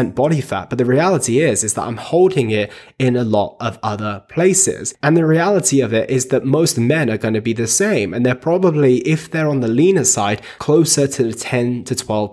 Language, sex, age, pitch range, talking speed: English, male, 20-39, 110-140 Hz, 230 wpm